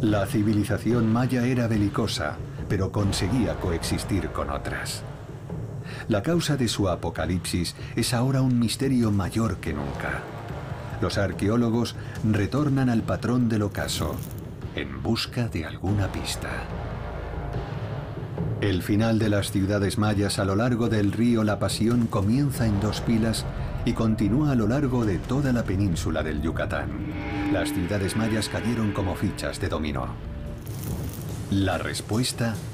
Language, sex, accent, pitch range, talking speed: Spanish, male, Spanish, 100-120 Hz, 130 wpm